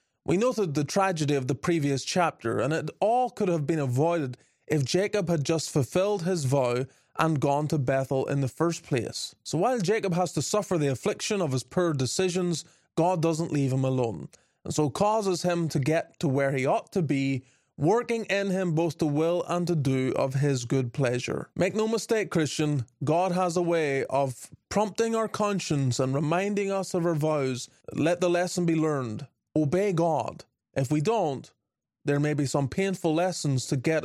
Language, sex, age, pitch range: English, male, 20-39, 140-180 Hz